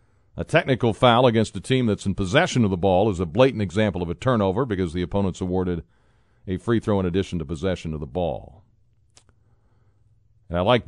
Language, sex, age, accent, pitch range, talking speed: English, male, 50-69, American, 95-115 Hz, 200 wpm